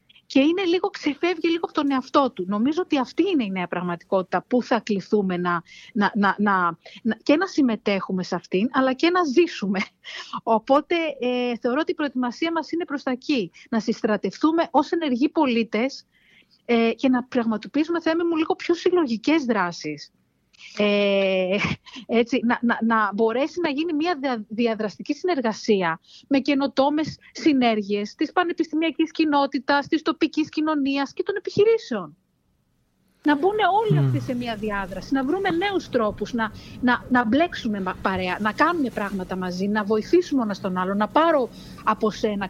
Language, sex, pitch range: Greek, female, 195-305 Hz